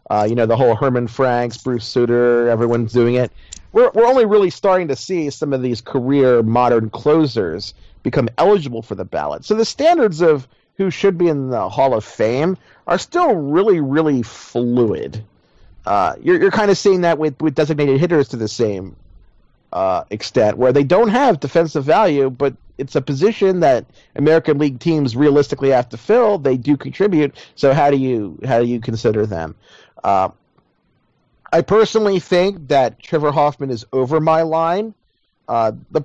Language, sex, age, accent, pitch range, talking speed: English, male, 40-59, American, 125-180 Hz, 175 wpm